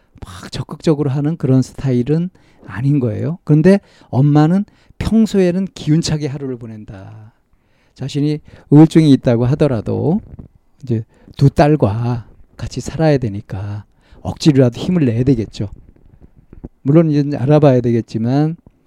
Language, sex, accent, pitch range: Korean, male, native, 115-155 Hz